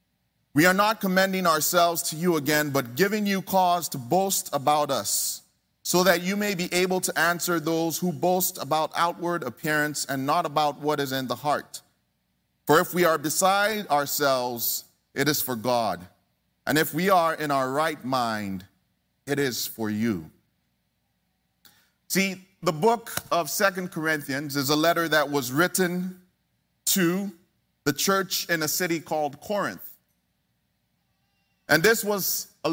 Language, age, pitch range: English, 30-49, 140-180 Hz